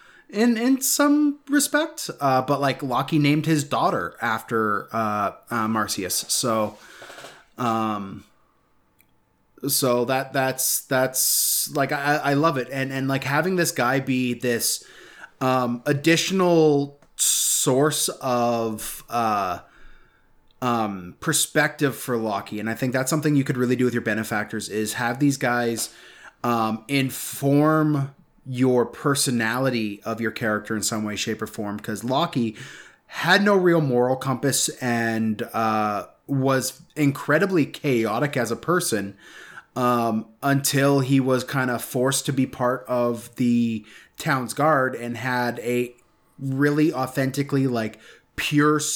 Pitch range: 115-145 Hz